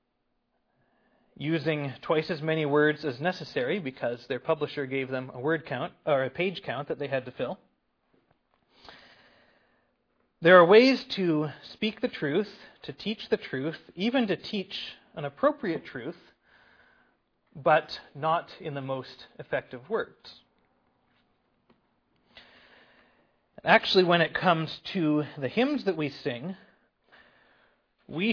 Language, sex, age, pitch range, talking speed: English, male, 30-49, 140-195 Hz, 125 wpm